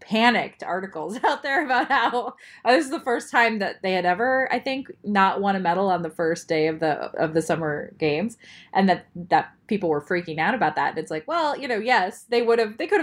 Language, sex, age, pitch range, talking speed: English, female, 20-39, 180-245 Hz, 240 wpm